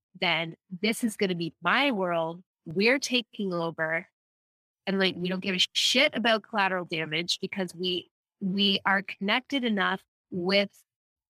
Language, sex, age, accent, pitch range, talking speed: English, female, 20-39, American, 175-205 Hz, 145 wpm